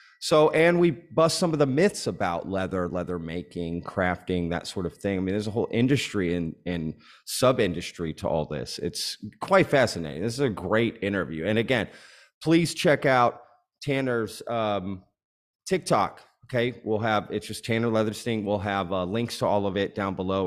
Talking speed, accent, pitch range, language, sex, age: 190 wpm, American, 95-125 Hz, English, male, 30-49